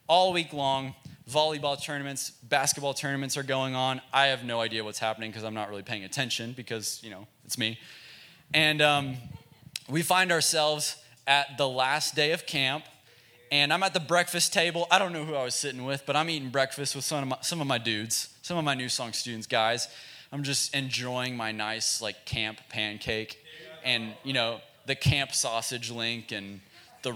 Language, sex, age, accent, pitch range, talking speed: English, male, 20-39, American, 120-155 Hz, 195 wpm